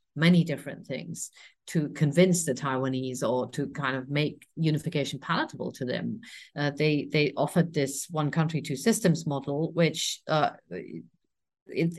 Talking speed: 145 wpm